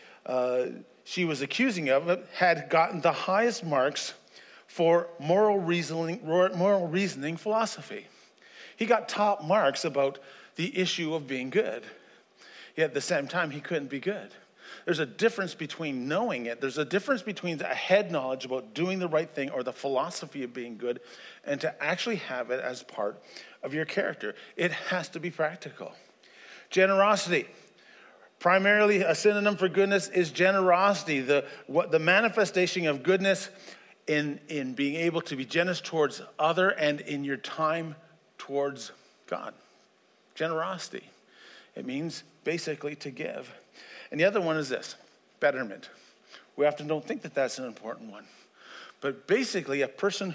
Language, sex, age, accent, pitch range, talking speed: English, male, 40-59, American, 140-190 Hz, 155 wpm